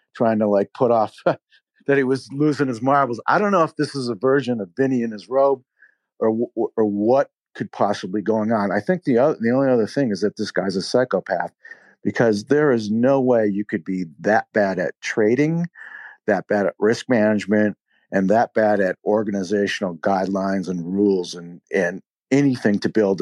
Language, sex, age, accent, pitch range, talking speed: English, male, 50-69, American, 95-125 Hz, 195 wpm